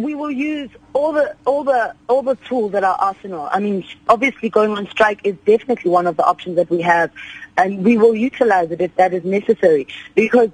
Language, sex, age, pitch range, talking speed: English, female, 30-49, 185-235 Hz, 215 wpm